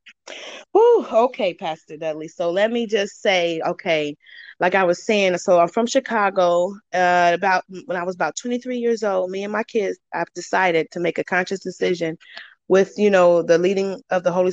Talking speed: 185 wpm